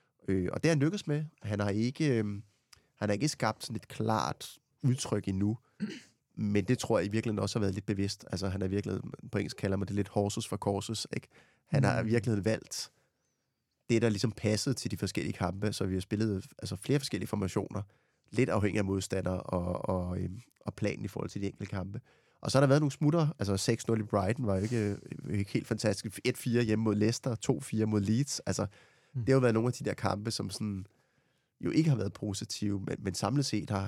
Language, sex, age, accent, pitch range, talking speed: Danish, male, 30-49, native, 100-120 Hz, 220 wpm